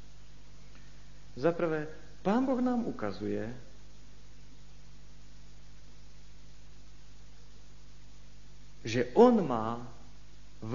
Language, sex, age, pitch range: Slovak, male, 50-69, 115-185 Hz